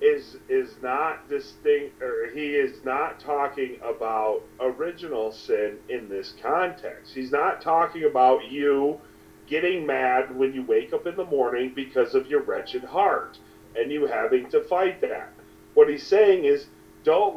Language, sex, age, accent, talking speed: English, male, 40-59, American, 155 wpm